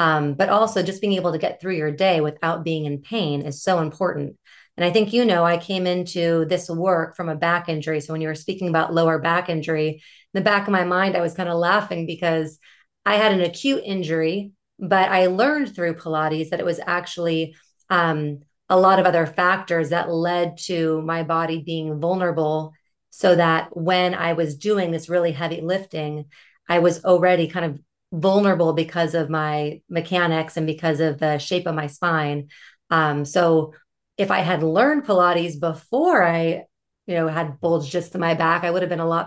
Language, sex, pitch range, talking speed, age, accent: English, female, 160-185 Hz, 200 wpm, 30-49, American